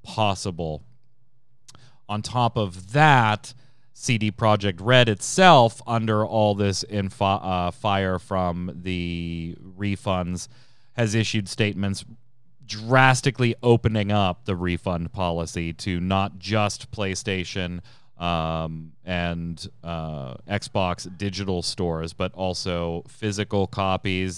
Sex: male